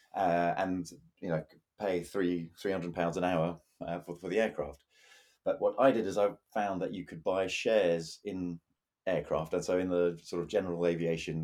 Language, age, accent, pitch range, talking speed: English, 30-49, British, 85-105 Hz, 190 wpm